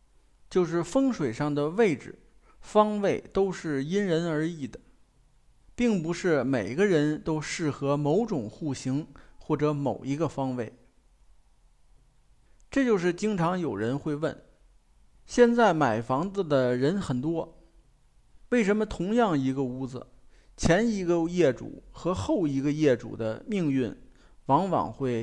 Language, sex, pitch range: Chinese, male, 130-195 Hz